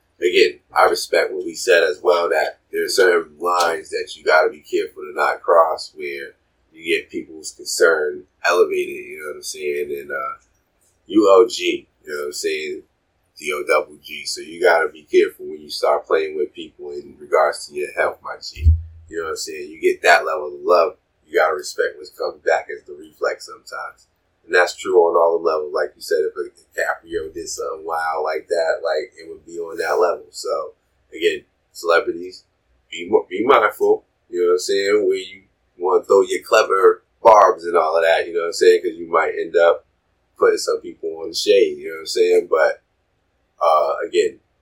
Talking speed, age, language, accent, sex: 210 wpm, 30-49, English, American, male